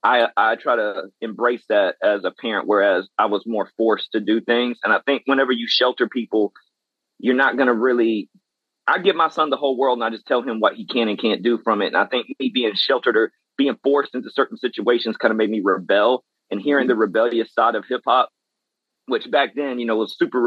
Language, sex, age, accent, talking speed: English, male, 30-49, American, 235 wpm